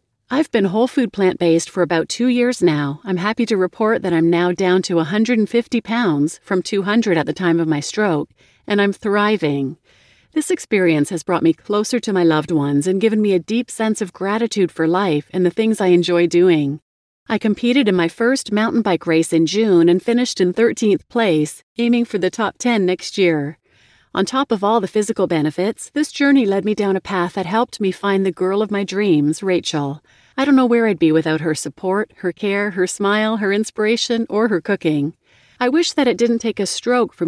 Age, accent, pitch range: 40-59, American, 165-220 Hz